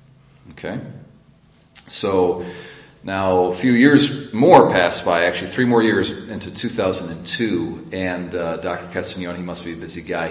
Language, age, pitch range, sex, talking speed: English, 40-59, 90-120 Hz, male, 145 wpm